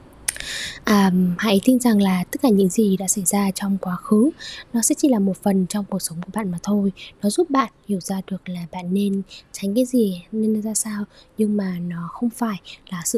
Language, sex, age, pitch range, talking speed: Vietnamese, female, 20-39, 185-215 Hz, 230 wpm